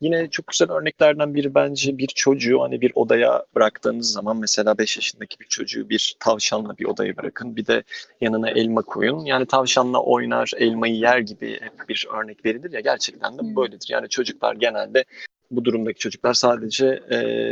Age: 30-49